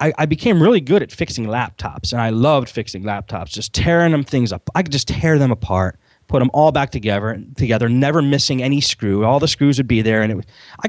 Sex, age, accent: male, 30-49, American